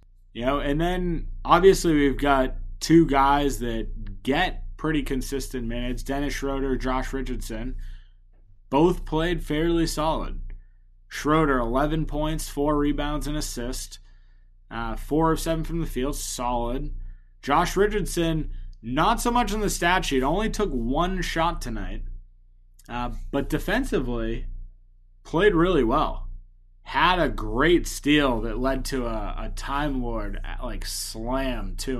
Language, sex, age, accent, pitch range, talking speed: English, male, 20-39, American, 95-155 Hz, 130 wpm